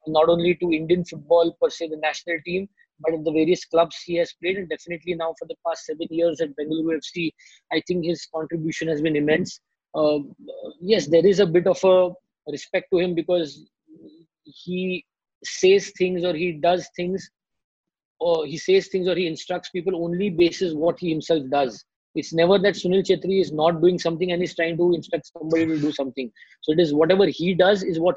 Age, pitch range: 20-39, 160-185 Hz